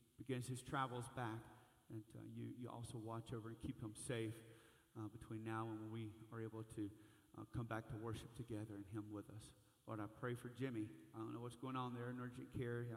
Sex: male